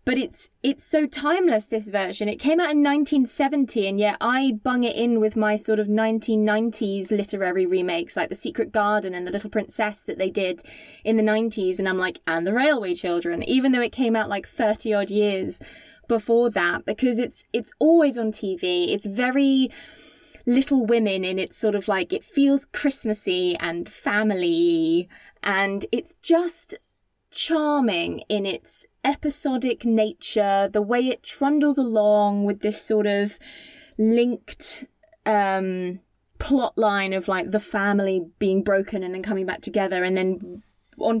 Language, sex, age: English, female, 20-39